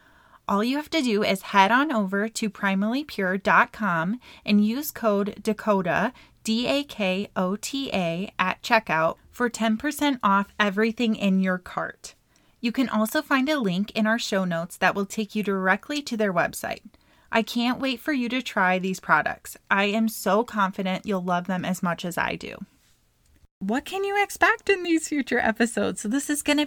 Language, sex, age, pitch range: English, female, 20-39, 195-240 Hz